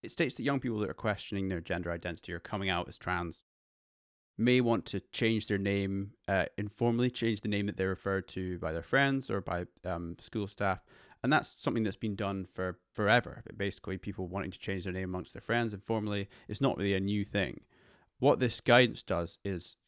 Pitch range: 95-115 Hz